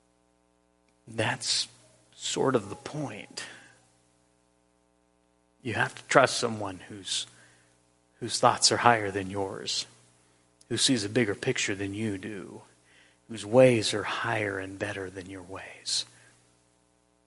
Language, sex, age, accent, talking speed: English, male, 40-59, American, 115 wpm